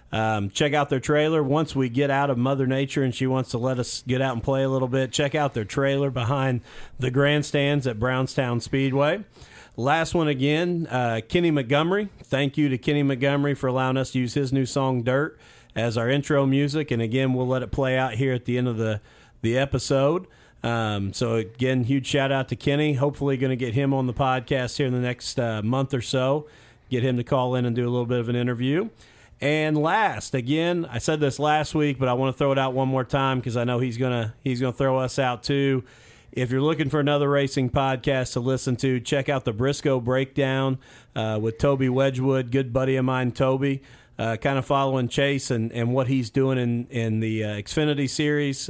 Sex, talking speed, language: male, 220 wpm, English